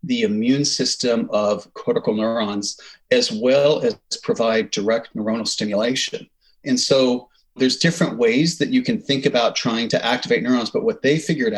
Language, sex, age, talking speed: English, male, 40-59, 160 wpm